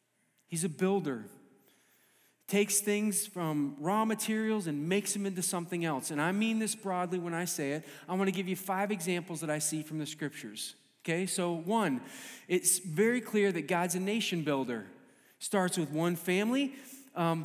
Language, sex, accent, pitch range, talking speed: English, male, American, 175-230 Hz, 175 wpm